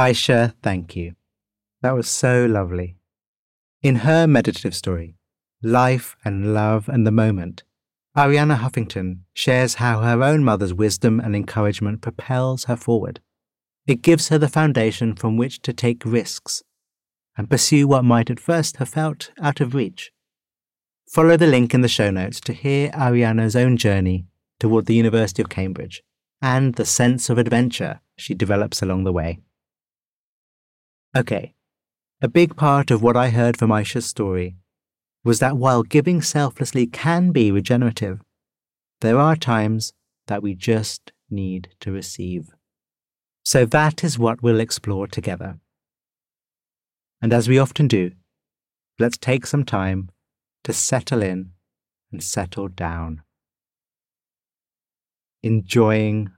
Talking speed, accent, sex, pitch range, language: 135 wpm, British, male, 100-130 Hz, English